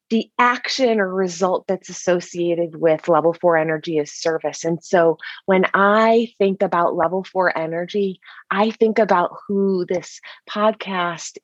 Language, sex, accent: English, female, American